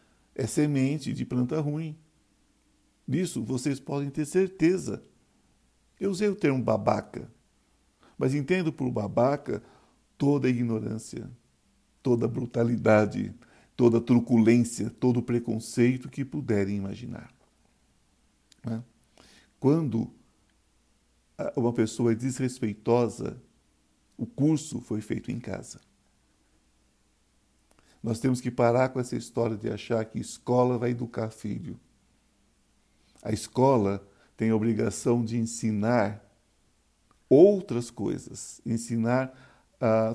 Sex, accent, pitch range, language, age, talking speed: male, Brazilian, 110-125 Hz, Portuguese, 60-79, 105 wpm